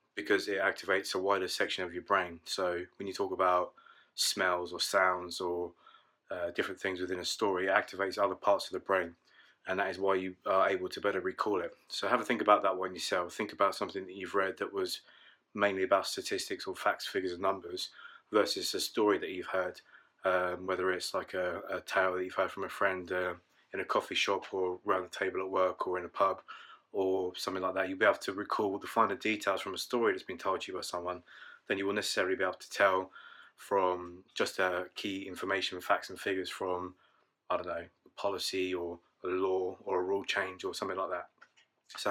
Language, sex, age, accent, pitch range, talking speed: English, male, 20-39, British, 90-100 Hz, 220 wpm